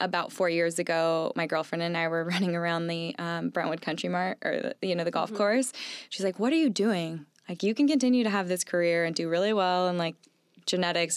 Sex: female